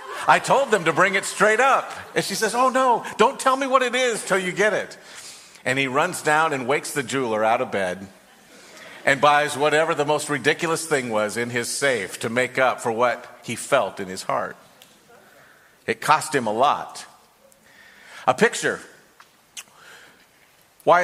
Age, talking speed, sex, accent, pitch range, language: 50-69, 180 wpm, male, American, 130-180 Hz, English